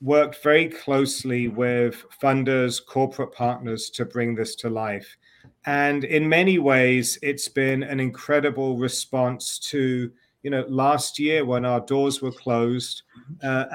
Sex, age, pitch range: male, 40-59, 130-160 Hz